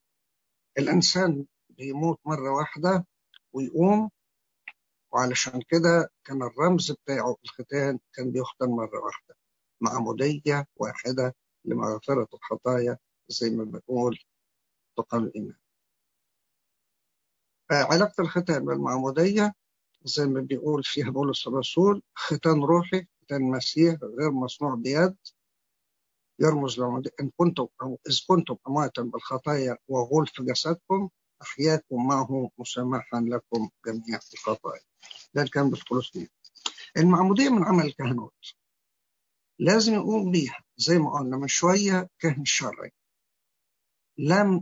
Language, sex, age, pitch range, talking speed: English, male, 60-79, 125-170 Hz, 100 wpm